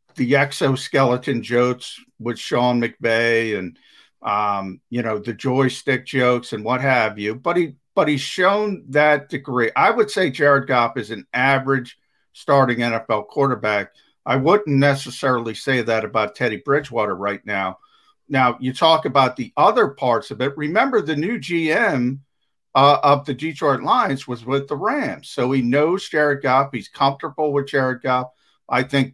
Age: 50-69